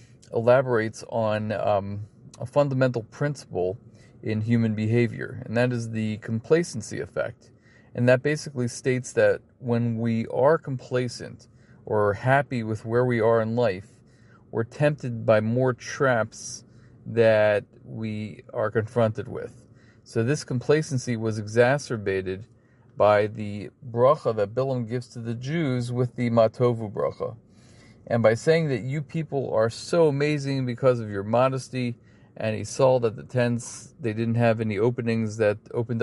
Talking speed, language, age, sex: 145 wpm, English, 40-59, male